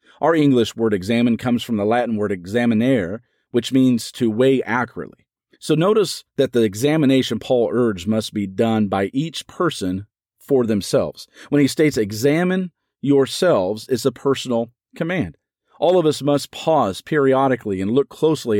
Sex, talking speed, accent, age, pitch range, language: male, 155 wpm, American, 40-59, 110-140 Hz, English